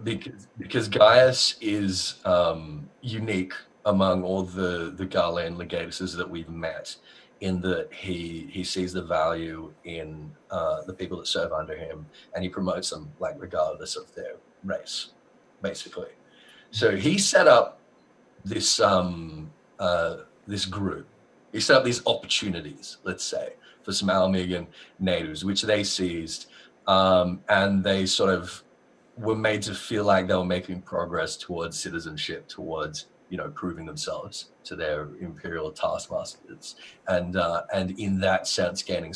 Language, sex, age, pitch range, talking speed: English, male, 30-49, 90-105 Hz, 145 wpm